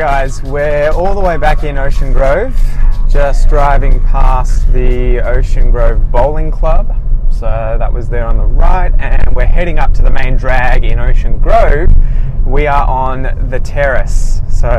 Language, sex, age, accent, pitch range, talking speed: English, male, 20-39, Australian, 110-140 Hz, 165 wpm